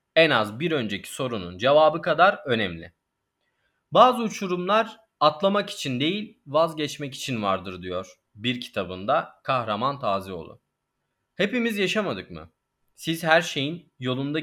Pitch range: 115-170 Hz